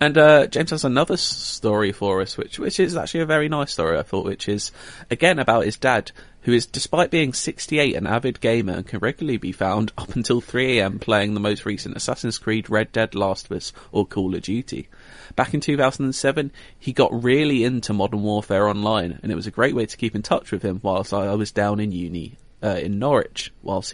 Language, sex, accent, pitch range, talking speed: English, male, British, 100-135 Hz, 220 wpm